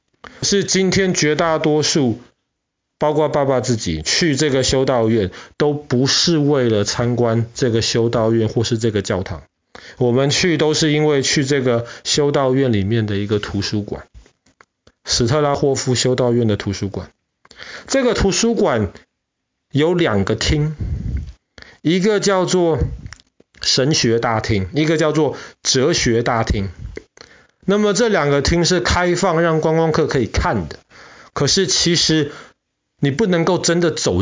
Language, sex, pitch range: Chinese, male, 110-160 Hz